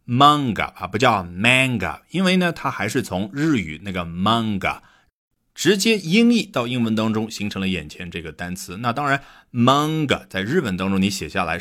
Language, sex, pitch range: Chinese, male, 90-145 Hz